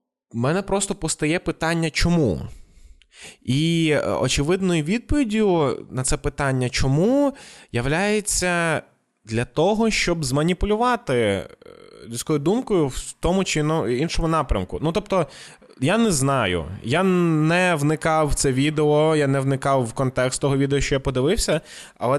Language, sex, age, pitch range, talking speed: Ukrainian, male, 20-39, 120-160 Hz, 125 wpm